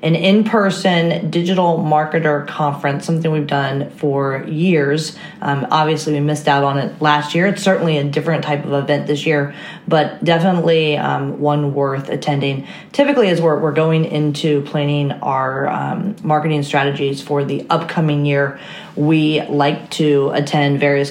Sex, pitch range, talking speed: female, 145-165 Hz, 155 wpm